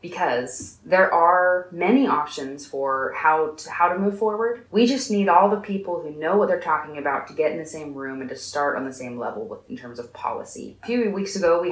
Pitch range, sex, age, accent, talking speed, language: 145-200 Hz, female, 20-39, American, 240 wpm, English